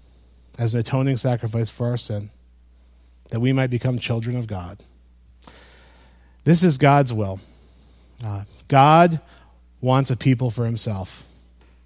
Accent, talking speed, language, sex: American, 125 wpm, English, male